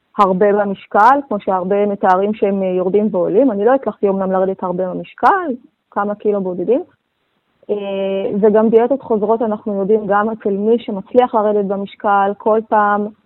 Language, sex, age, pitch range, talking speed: Hebrew, female, 20-39, 195-230 Hz, 145 wpm